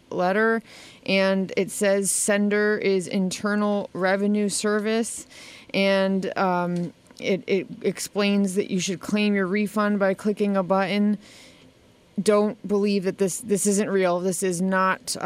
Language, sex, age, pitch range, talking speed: English, female, 30-49, 185-215 Hz, 135 wpm